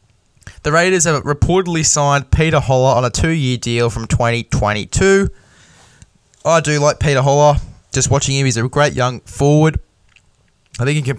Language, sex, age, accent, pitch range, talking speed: English, male, 10-29, Australian, 115-135 Hz, 165 wpm